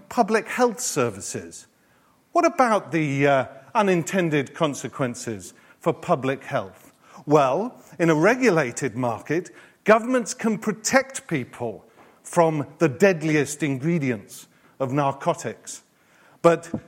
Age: 40-59